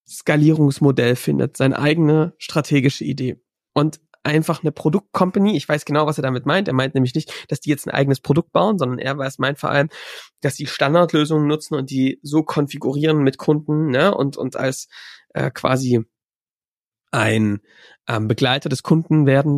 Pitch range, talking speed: 125-150 Hz, 170 wpm